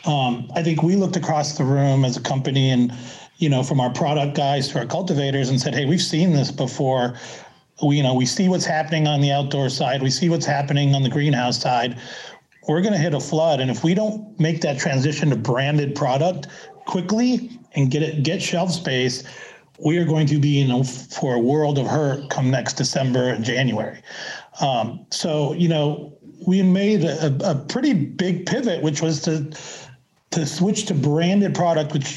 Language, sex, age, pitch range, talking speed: English, male, 40-59, 140-175 Hz, 200 wpm